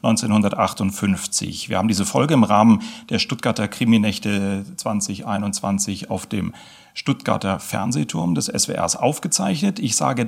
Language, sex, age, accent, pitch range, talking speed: German, male, 40-59, German, 105-135 Hz, 115 wpm